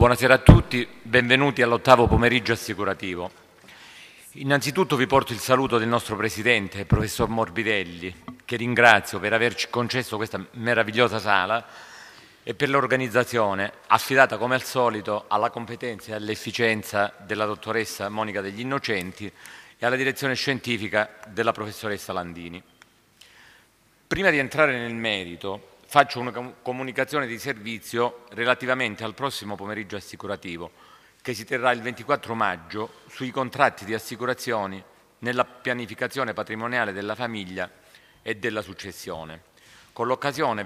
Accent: native